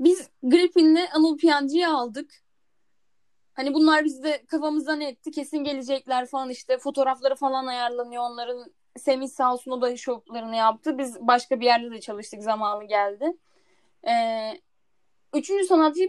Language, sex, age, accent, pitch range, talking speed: Turkish, female, 10-29, native, 250-315 Hz, 125 wpm